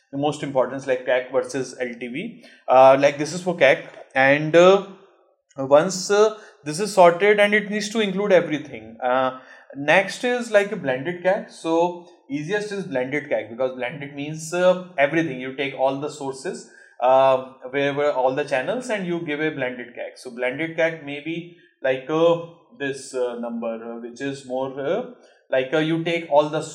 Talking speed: 180 wpm